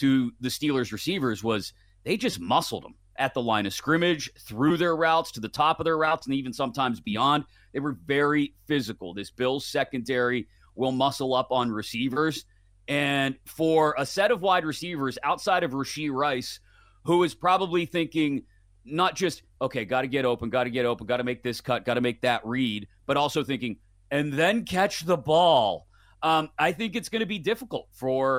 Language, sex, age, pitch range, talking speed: English, male, 30-49, 120-155 Hz, 195 wpm